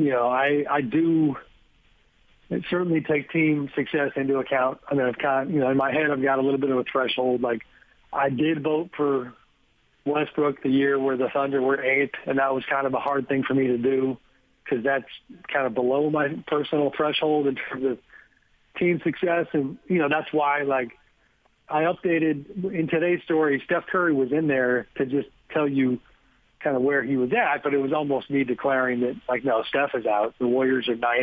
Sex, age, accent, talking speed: male, 40-59, American, 210 wpm